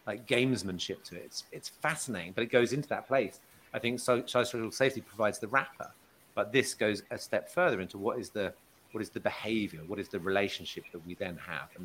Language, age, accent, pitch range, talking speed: English, 40-59, British, 105-125 Hz, 220 wpm